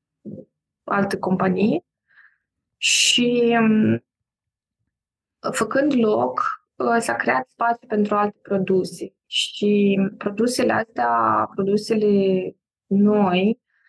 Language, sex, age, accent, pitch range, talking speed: Romanian, female, 20-39, native, 195-220 Hz, 70 wpm